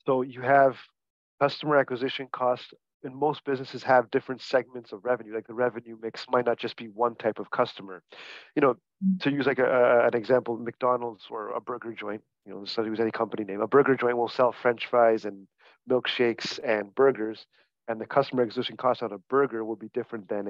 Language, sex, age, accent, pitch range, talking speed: English, male, 30-49, American, 115-130 Hz, 210 wpm